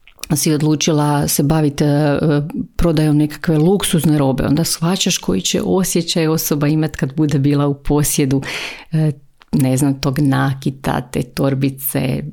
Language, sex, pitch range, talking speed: Croatian, female, 140-170 Hz, 135 wpm